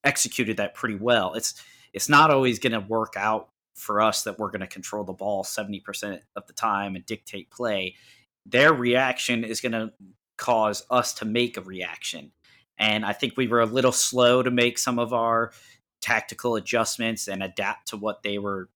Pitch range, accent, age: 100-120 Hz, American, 30-49